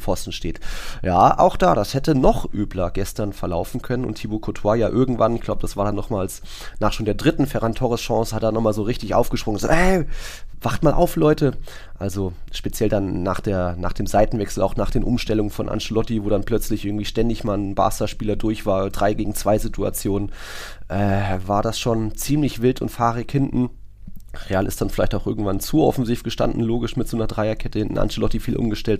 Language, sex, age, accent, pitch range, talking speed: German, male, 20-39, German, 100-125 Hz, 205 wpm